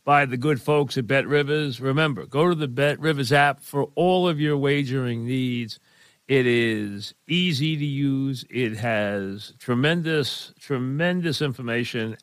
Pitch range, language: 115-145 Hz, English